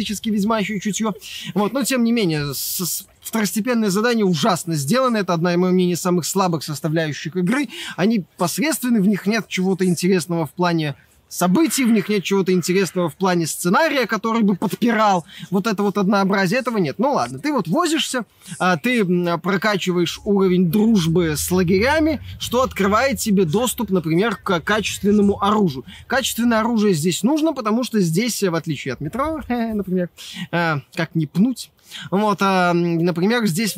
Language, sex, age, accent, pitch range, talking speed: Russian, male, 20-39, native, 180-230 Hz, 150 wpm